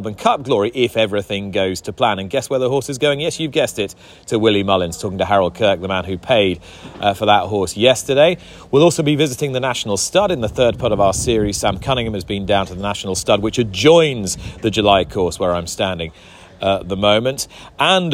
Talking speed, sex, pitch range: 230 wpm, male, 100-135 Hz